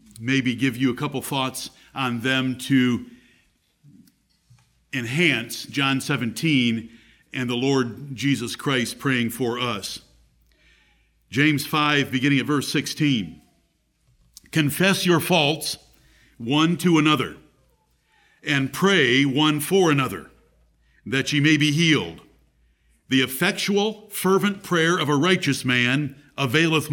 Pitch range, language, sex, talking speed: 125-160 Hz, English, male, 115 wpm